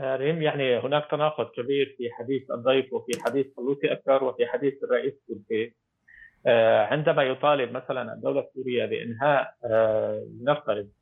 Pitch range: 135-165 Hz